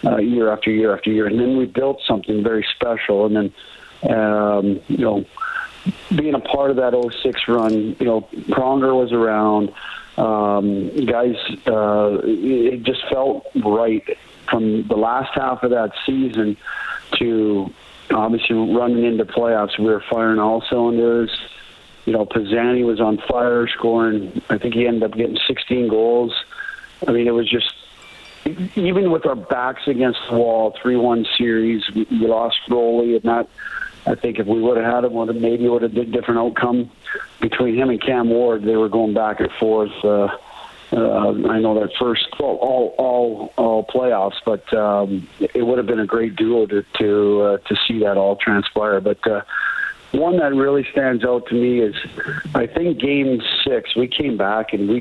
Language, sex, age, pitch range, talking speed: English, male, 40-59, 110-120 Hz, 175 wpm